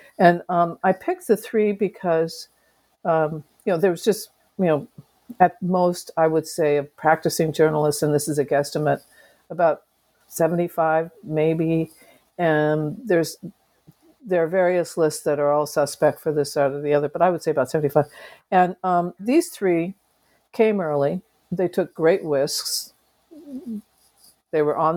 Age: 60-79